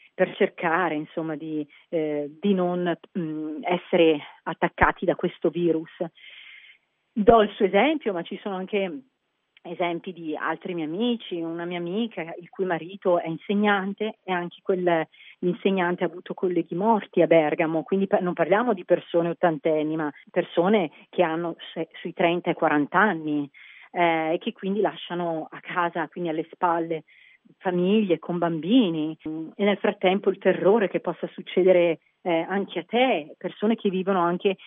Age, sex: 40-59, female